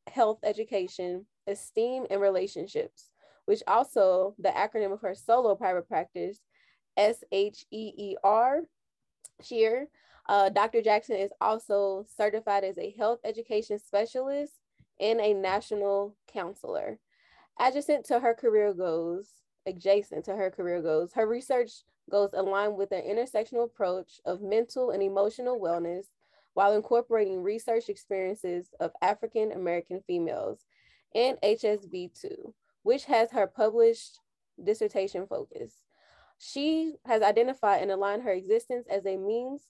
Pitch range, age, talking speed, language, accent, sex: 195-235 Hz, 20-39, 120 wpm, English, American, female